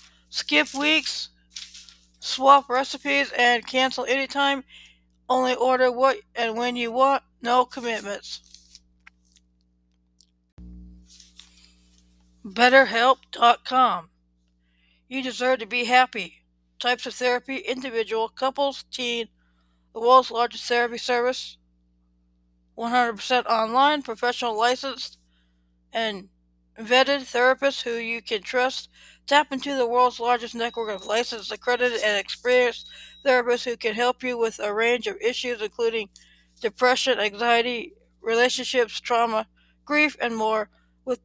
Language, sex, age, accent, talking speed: English, female, 60-79, American, 110 wpm